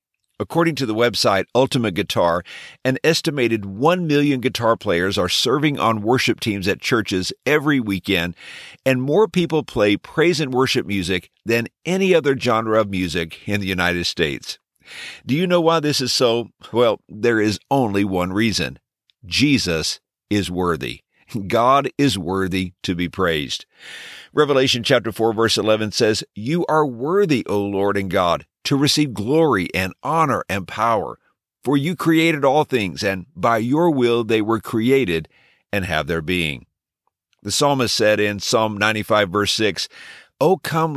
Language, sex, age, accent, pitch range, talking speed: English, male, 50-69, American, 95-140 Hz, 160 wpm